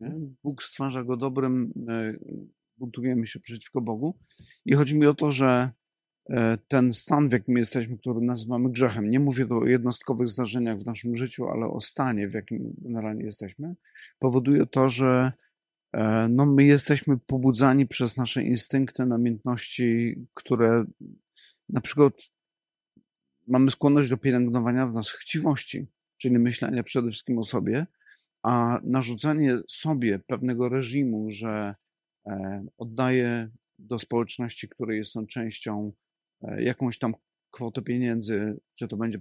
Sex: male